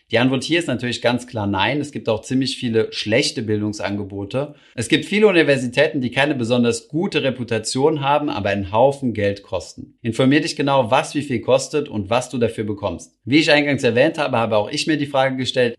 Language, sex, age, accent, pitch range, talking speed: German, male, 30-49, German, 110-140 Hz, 205 wpm